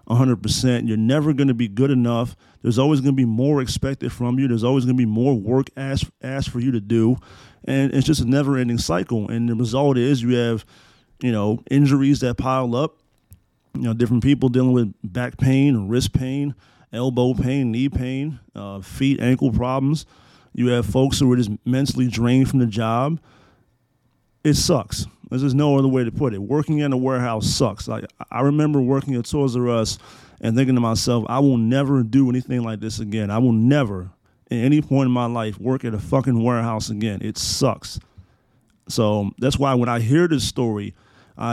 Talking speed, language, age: 195 wpm, English, 30-49